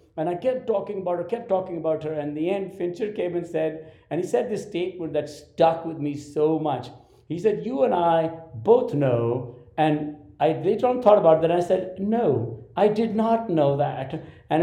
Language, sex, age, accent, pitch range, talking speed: English, male, 60-79, Indian, 160-205 Hz, 215 wpm